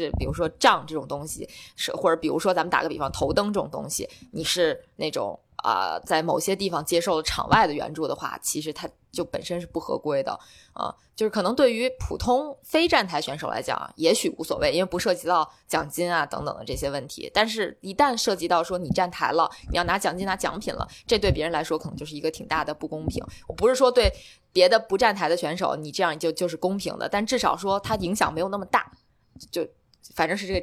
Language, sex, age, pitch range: Chinese, female, 20-39, 160-225 Hz